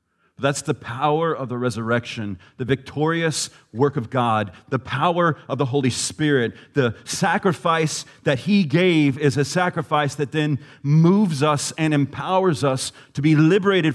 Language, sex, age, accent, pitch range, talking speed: English, male, 40-59, American, 140-165 Hz, 150 wpm